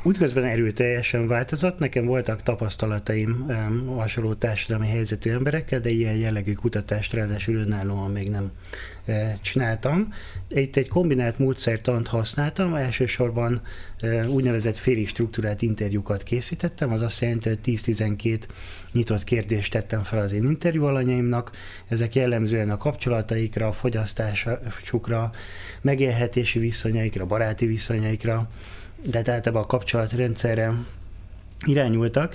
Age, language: 20-39, Hungarian